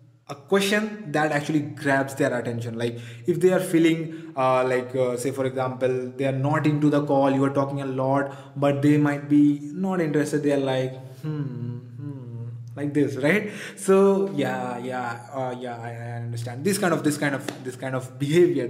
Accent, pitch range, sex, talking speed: Indian, 130-155 Hz, male, 195 wpm